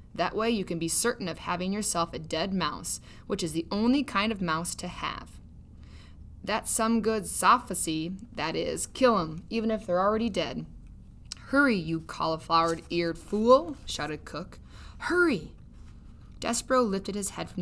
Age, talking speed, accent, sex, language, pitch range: 20-39, 155 wpm, American, female, English, 160-210 Hz